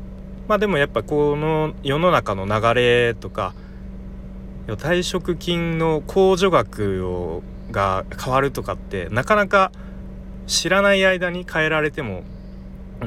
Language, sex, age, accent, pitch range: Japanese, male, 30-49, native, 90-140 Hz